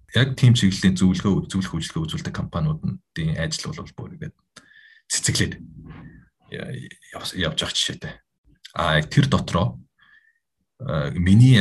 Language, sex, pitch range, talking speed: English, male, 80-95 Hz, 125 wpm